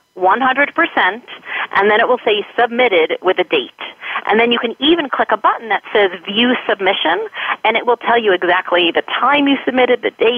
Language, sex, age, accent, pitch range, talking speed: English, female, 30-49, American, 175-245 Hz, 190 wpm